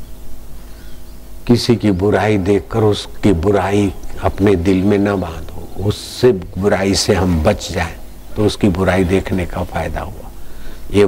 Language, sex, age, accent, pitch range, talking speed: Hindi, male, 60-79, native, 90-105 Hz, 135 wpm